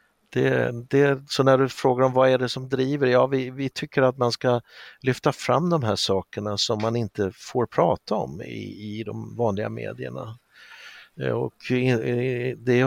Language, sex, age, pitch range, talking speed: Swedish, male, 60-79, 105-125 Hz, 175 wpm